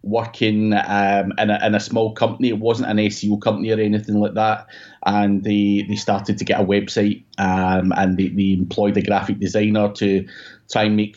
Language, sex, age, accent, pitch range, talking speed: English, male, 30-49, British, 100-115 Hz, 195 wpm